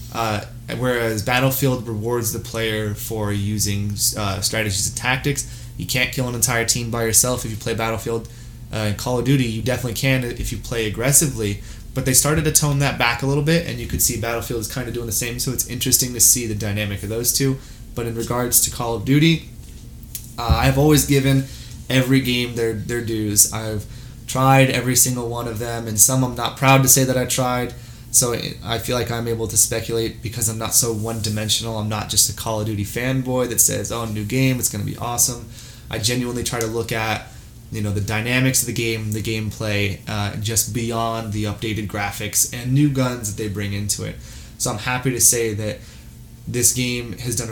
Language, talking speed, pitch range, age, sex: English, 215 wpm, 110-125 Hz, 20-39, male